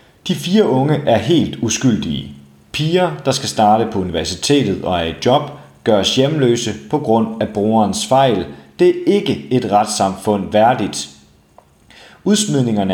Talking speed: 140 wpm